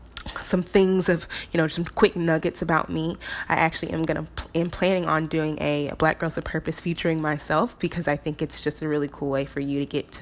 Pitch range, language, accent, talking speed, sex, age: 150-180 Hz, English, American, 235 wpm, female, 20-39